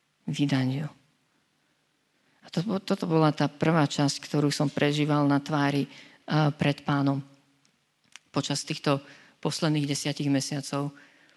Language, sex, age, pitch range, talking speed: Slovak, female, 40-59, 140-160 Hz, 110 wpm